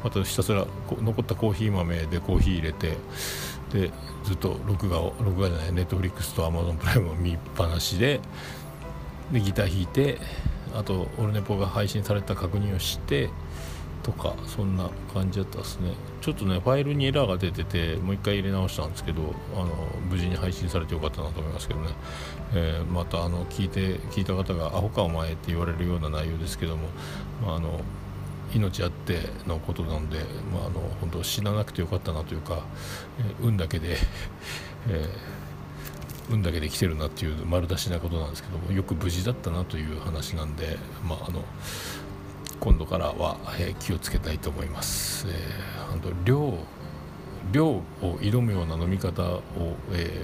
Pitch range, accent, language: 80-100 Hz, native, Japanese